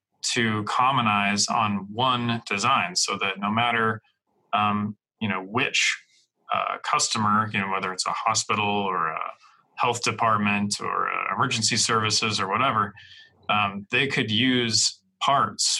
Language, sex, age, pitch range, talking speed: English, male, 20-39, 105-120 Hz, 135 wpm